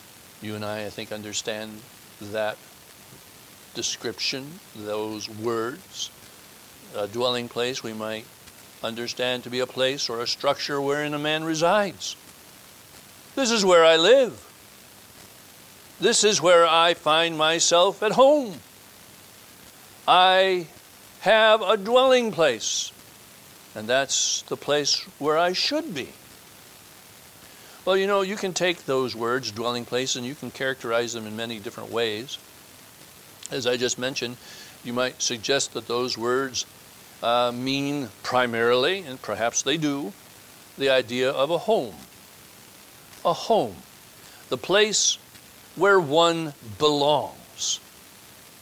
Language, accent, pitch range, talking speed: English, American, 115-165 Hz, 125 wpm